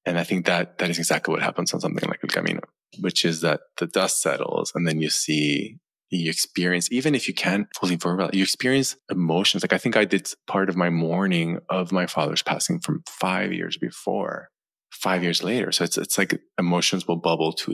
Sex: male